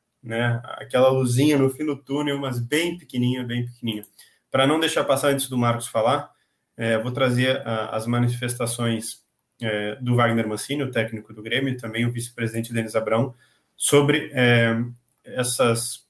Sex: male